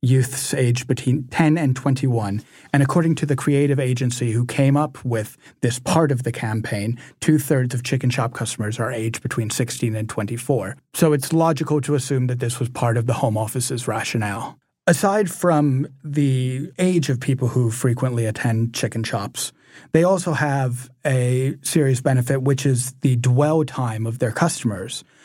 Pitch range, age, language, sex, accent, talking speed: 120-145 Hz, 30-49, English, male, American, 170 wpm